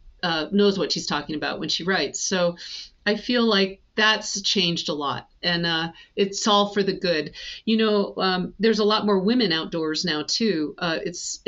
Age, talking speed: 40-59, 195 wpm